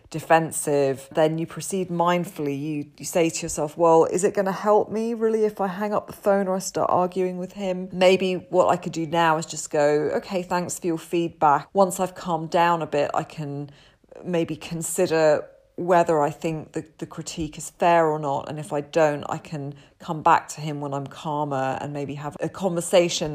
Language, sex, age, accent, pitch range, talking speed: English, female, 30-49, British, 140-175 Hz, 210 wpm